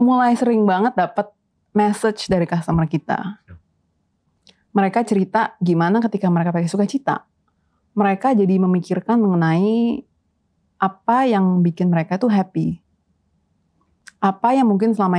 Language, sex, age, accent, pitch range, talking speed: Indonesian, female, 30-49, native, 170-215 Hz, 120 wpm